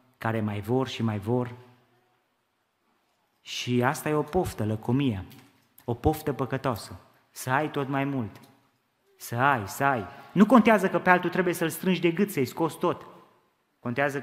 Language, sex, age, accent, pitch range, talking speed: Romanian, male, 20-39, native, 130-170 Hz, 160 wpm